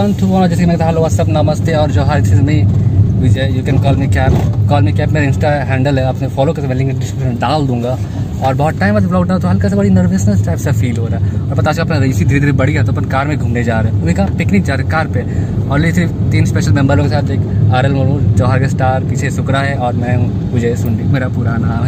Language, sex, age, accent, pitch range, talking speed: Hindi, male, 20-39, native, 100-130 Hz, 250 wpm